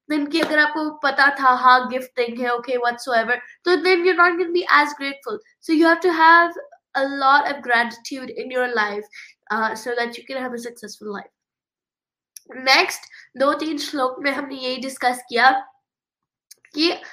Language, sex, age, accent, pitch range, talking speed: Hindi, female, 20-39, native, 250-310 Hz, 100 wpm